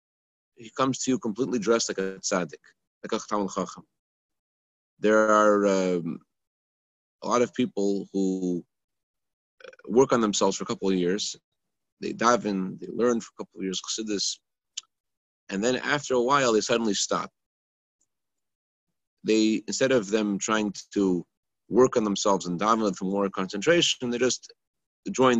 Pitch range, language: 95-125 Hz, English